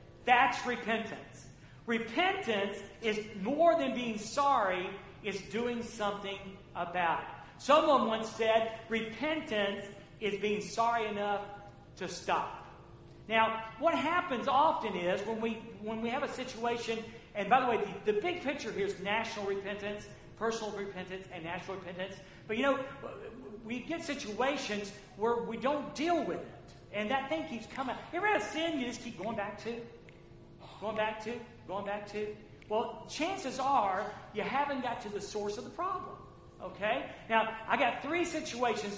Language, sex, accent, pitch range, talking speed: English, male, American, 200-255 Hz, 160 wpm